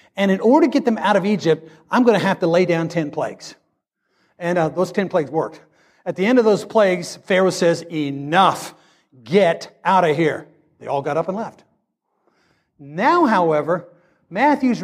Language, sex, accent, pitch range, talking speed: English, male, American, 185-240 Hz, 185 wpm